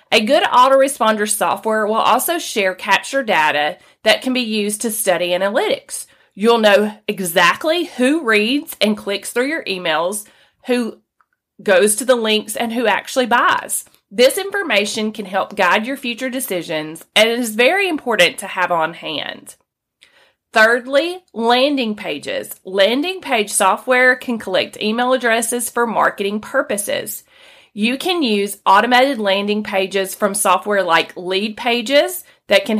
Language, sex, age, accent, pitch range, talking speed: English, female, 30-49, American, 195-260 Hz, 140 wpm